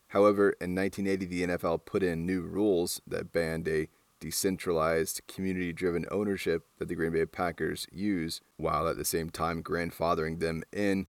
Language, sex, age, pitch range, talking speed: English, male, 20-39, 80-95 Hz, 155 wpm